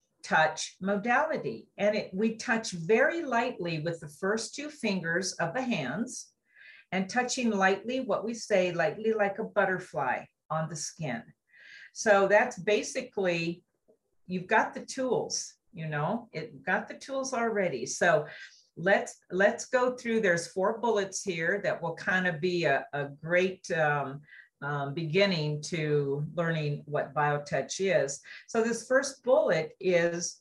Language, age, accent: English, 50-69, American